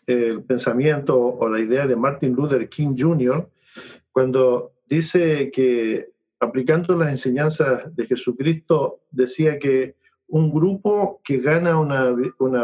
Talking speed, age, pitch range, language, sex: 125 wpm, 50-69, 125-160 Hz, English, male